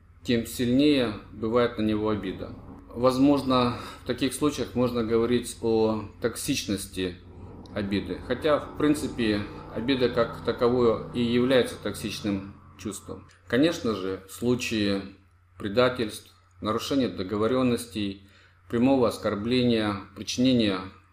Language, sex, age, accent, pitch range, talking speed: Russian, male, 40-59, native, 95-120 Hz, 100 wpm